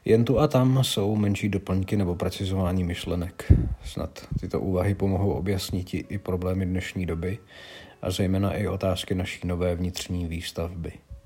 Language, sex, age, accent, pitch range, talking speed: Czech, male, 40-59, native, 90-100 Hz, 145 wpm